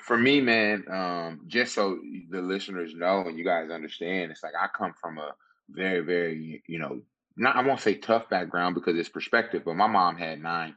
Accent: American